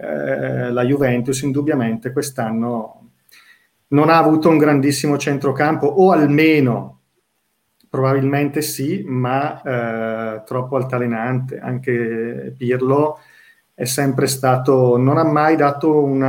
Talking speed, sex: 100 wpm, male